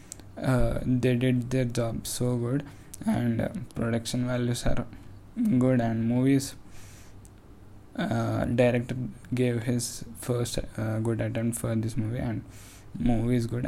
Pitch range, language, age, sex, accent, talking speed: 105-120 Hz, Telugu, 10-29, male, native, 130 wpm